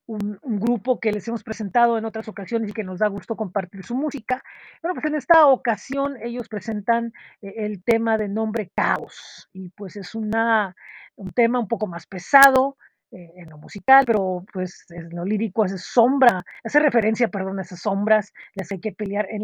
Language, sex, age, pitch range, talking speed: Spanish, female, 40-59, 205-255 Hz, 190 wpm